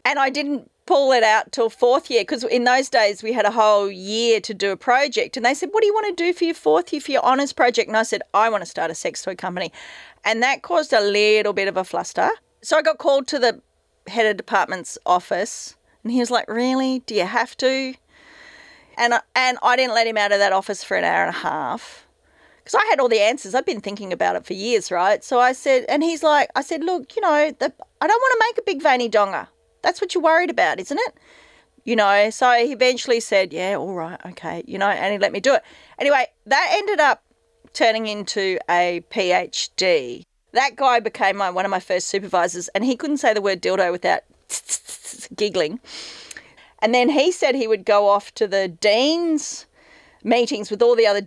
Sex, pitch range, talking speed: female, 200-290 Hz, 230 wpm